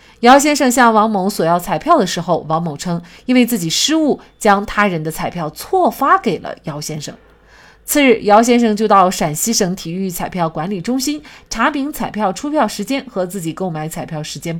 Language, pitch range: Chinese, 170-235 Hz